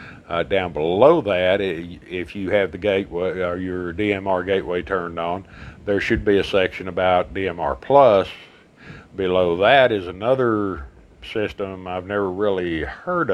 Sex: male